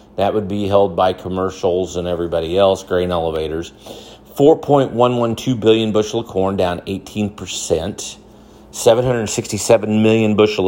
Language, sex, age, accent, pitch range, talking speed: English, male, 40-59, American, 95-115 Hz, 120 wpm